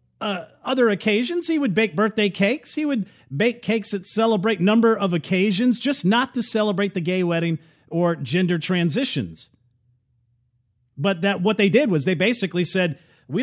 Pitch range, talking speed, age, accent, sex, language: 170-235 Hz, 165 wpm, 40-59, American, male, English